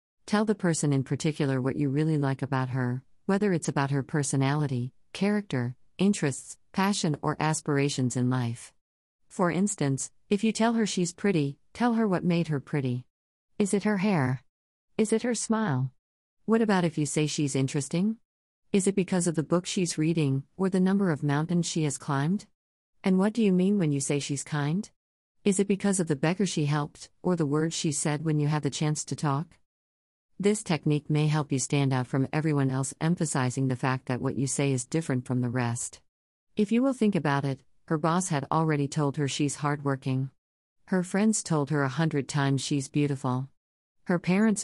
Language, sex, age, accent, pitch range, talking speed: English, female, 50-69, American, 135-180 Hz, 195 wpm